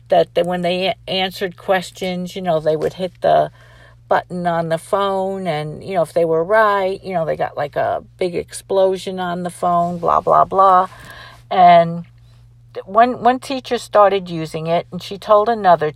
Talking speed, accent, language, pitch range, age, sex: 175 wpm, American, English, 165-200 Hz, 50-69, female